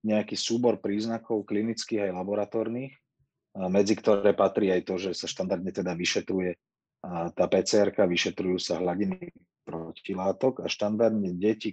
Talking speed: 130 wpm